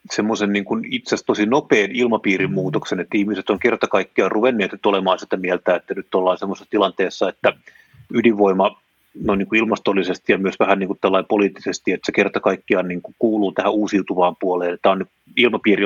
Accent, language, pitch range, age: native, Finnish, 95-110 Hz, 30-49